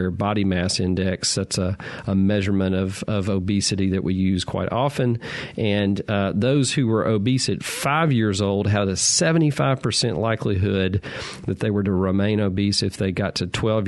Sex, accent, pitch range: male, American, 100-120 Hz